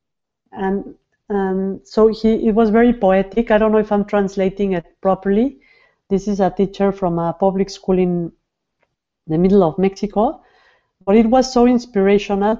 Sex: female